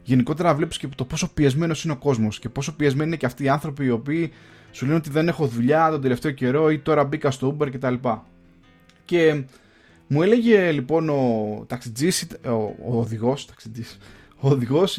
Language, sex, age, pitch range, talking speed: Greek, male, 20-39, 120-180 Hz, 195 wpm